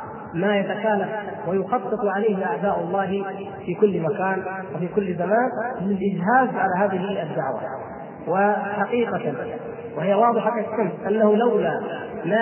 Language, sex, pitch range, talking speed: Arabic, male, 190-225 Hz, 110 wpm